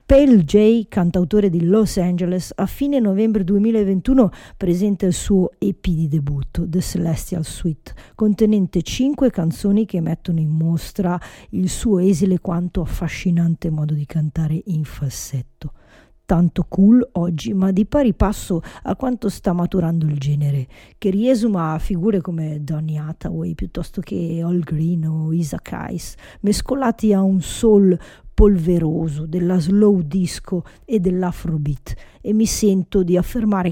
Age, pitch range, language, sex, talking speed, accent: 50-69, 160-200 Hz, English, female, 140 wpm, Italian